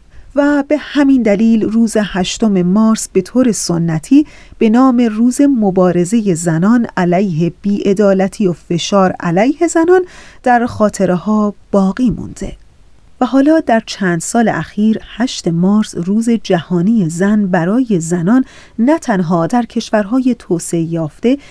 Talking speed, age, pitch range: 125 wpm, 30-49, 180-235 Hz